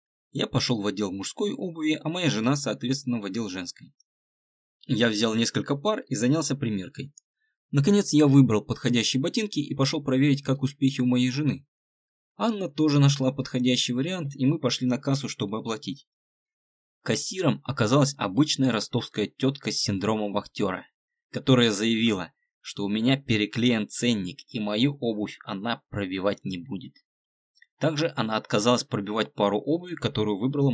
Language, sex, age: Russian, male, 20-39